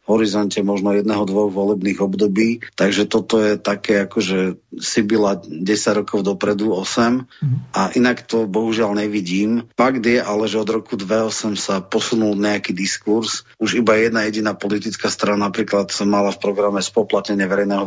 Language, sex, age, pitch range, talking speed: Slovak, male, 30-49, 100-110 Hz, 155 wpm